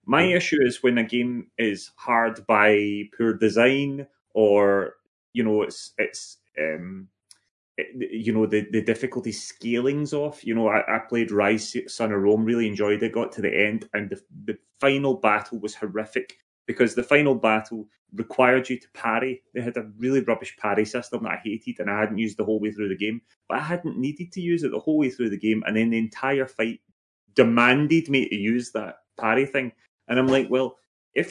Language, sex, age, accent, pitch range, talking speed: English, male, 30-49, British, 110-135 Hz, 205 wpm